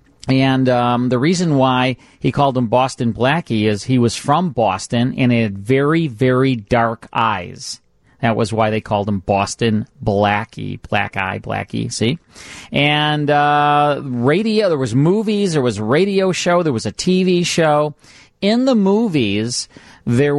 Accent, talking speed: American, 160 wpm